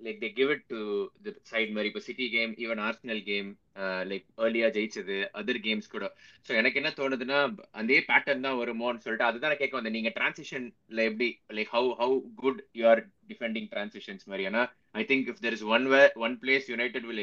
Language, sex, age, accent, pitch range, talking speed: Tamil, male, 20-39, native, 110-130 Hz, 200 wpm